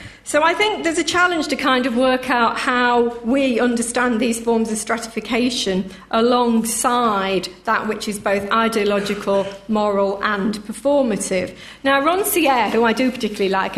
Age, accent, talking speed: 40-59, British, 150 wpm